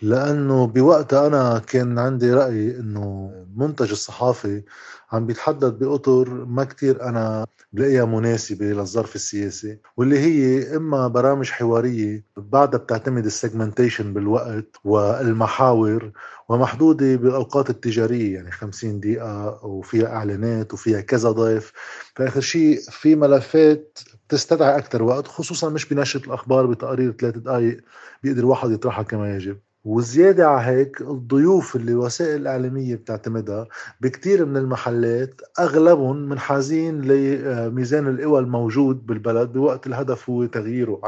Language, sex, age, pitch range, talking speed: Arabic, male, 20-39, 115-135 Hz, 120 wpm